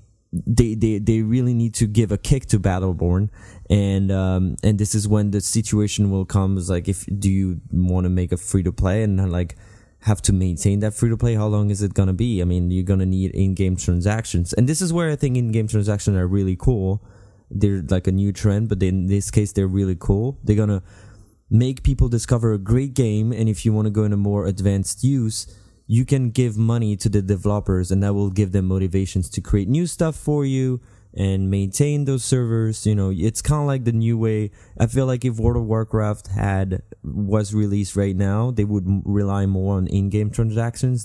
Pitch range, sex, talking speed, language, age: 95-110 Hz, male, 220 wpm, English, 20-39